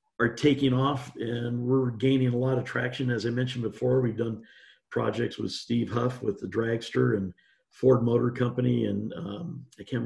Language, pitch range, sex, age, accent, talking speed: English, 110-140 Hz, male, 50-69, American, 185 wpm